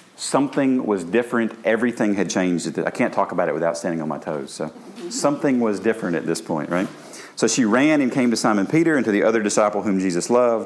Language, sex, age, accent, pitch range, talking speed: English, male, 40-59, American, 95-120 Hz, 225 wpm